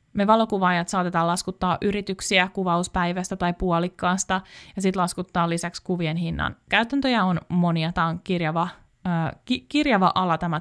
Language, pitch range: Finnish, 175-230 Hz